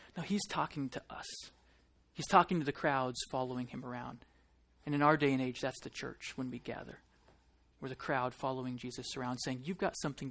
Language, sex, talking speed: English, male, 205 wpm